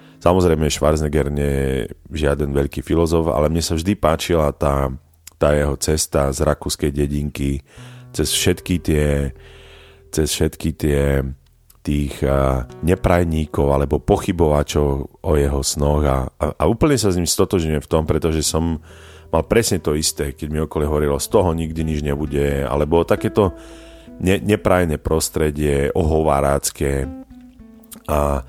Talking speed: 135 wpm